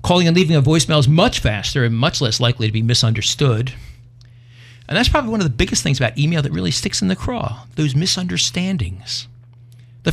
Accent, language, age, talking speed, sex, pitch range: American, English, 50-69, 200 wpm, male, 120-150 Hz